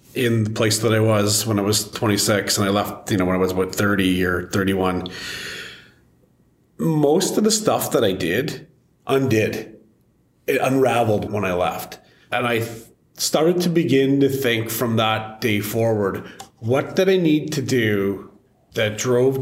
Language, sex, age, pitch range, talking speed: English, male, 30-49, 105-120 Hz, 165 wpm